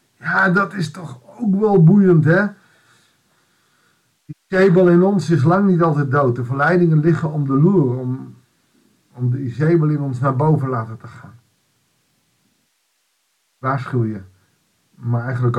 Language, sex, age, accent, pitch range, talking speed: Dutch, male, 50-69, Dutch, 125-170 Hz, 145 wpm